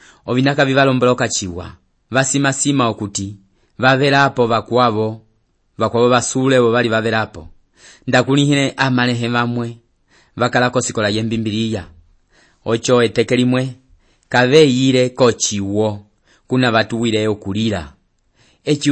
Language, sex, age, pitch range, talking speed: English, male, 30-49, 110-135 Hz, 105 wpm